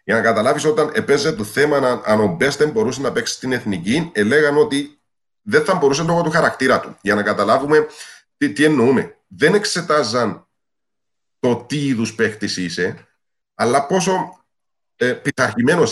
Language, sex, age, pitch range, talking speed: Greek, male, 40-59, 110-175 Hz, 155 wpm